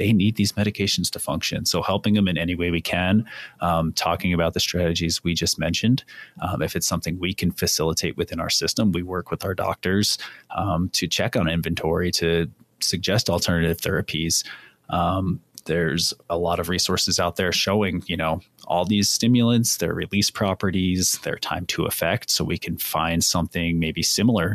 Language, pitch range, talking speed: English, 85-95 Hz, 180 wpm